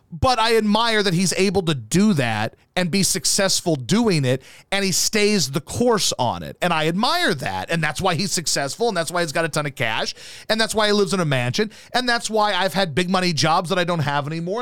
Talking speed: 240 wpm